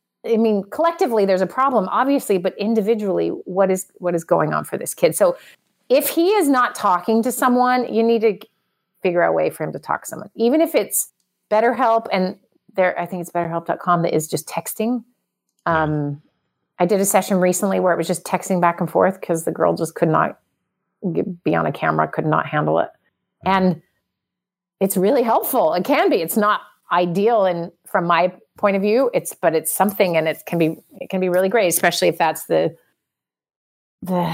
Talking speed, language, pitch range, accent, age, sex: 200 wpm, English, 175-230 Hz, American, 30-49, female